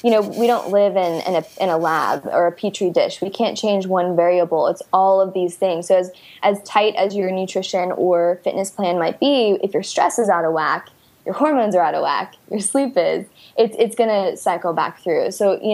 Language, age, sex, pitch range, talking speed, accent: English, 10-29, female, 185-230 Hz, 235 wpm, American